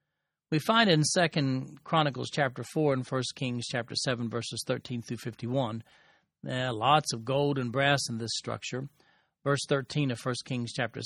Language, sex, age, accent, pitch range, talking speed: English, male, 40-59, American, 125-145 Hz, 170 wpm